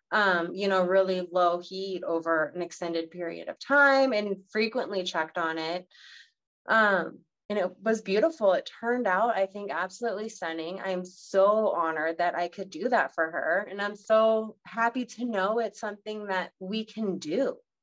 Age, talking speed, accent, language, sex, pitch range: 20-39, 170 wpm, American, English, female, 185-245 Hz